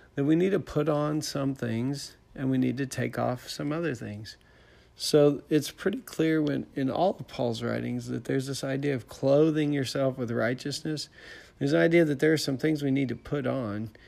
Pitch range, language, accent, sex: 115-140 Hz, English, American, male